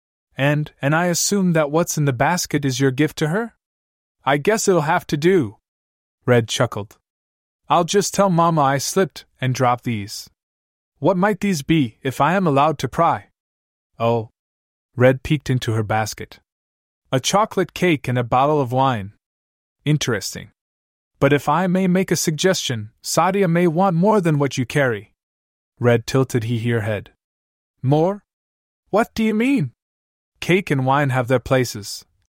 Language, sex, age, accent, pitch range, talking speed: English, male, 20-39, American, 100-165 Hz, 160 wpm